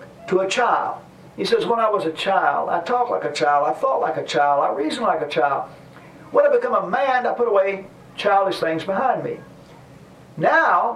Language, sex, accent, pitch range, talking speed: English, male, American, 165-265 Hz, 210 wpm